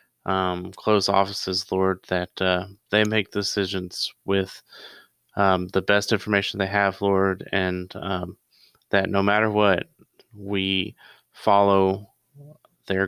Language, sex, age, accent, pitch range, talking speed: English, male, 30-49, American, 95-105 Hz, 120 wpm